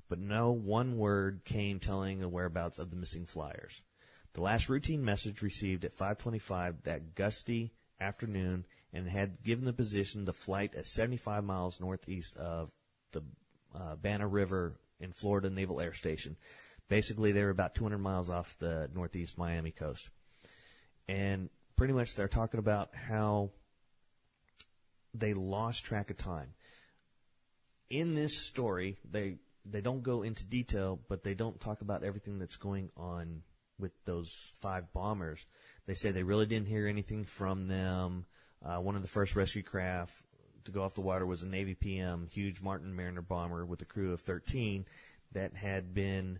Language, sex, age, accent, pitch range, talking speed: English, male, 30-49, American, 90-105 Hz, 165 wpm